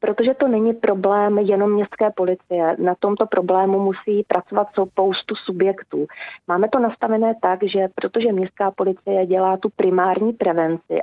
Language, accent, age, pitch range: Czech, native, 30-49, 185-210 Hz